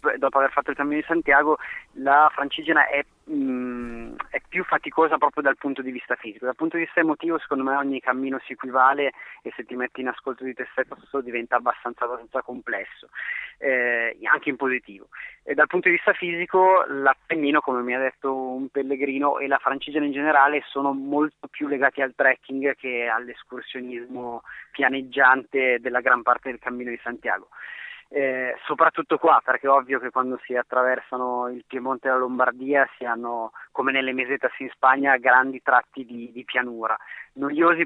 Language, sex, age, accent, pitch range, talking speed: Italian, male, 20-39, native, 125-145 Hz, 175 wpm